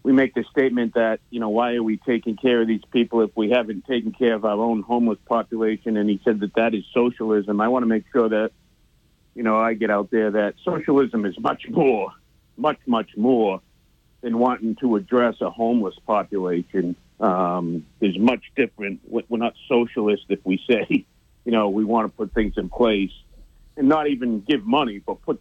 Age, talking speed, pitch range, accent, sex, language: 50-69, 200 wpm, 110-135 Hz, American, male, English